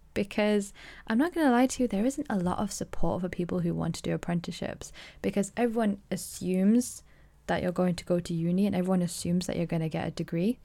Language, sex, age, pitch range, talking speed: English, female, 10-29, 175-200 Hz, 230 wpm